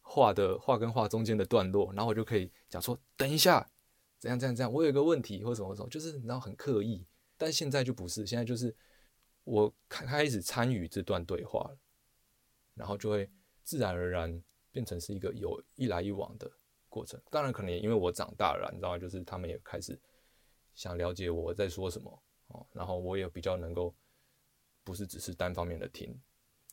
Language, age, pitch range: Chinese, 20-39, 90-125 Hz